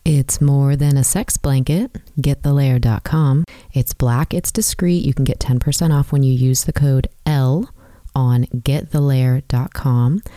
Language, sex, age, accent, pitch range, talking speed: English, female, 30-49, American, 135-165 Hz, 140 wpm